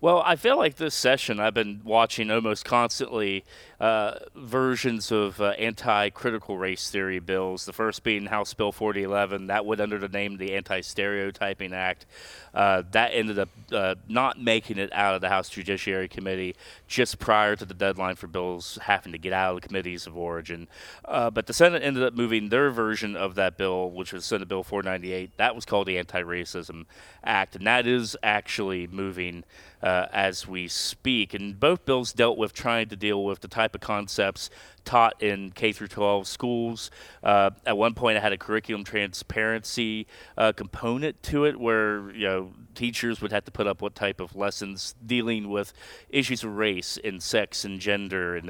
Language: English